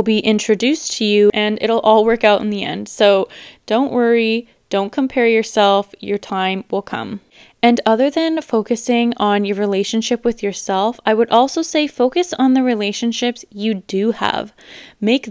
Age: 20-39